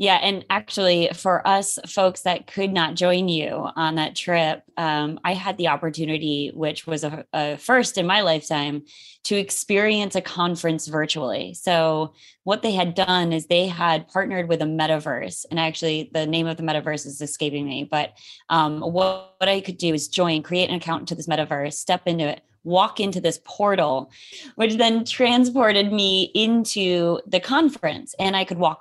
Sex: female